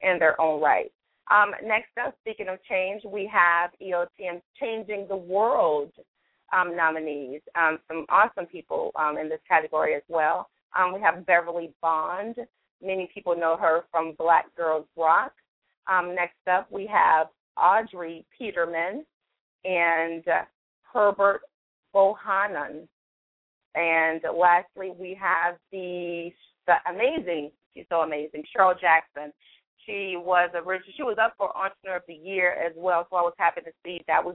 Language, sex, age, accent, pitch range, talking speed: English, female, 30-49, American, 165-195 Hz, 150 wpm